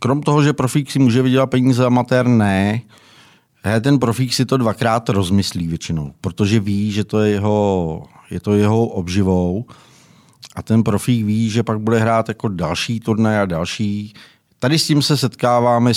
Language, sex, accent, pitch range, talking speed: Czech, male, native, 95-120 Hz, 175 wpm